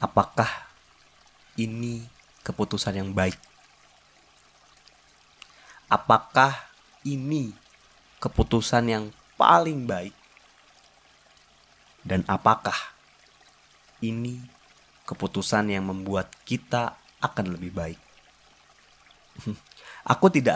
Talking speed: 65 wpm